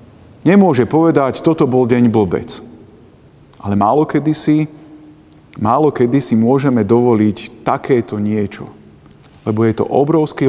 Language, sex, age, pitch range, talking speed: Slovak, male, 40-59, 115-140 Hz, 110 wpm